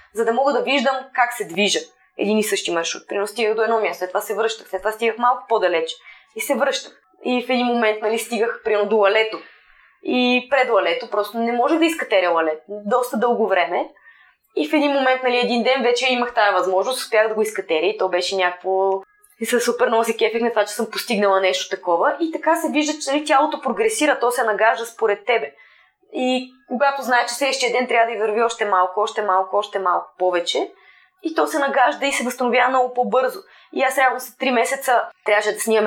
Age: 20-39